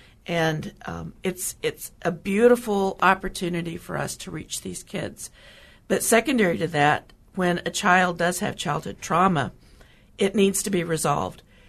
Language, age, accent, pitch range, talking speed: English, 50-69, American, 170-200 Hz, 150 wpm